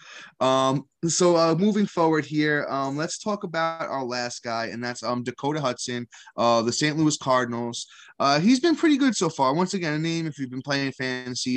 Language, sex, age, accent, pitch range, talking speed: English, male, 20-39, American, 120-165 Hz, 200 wpm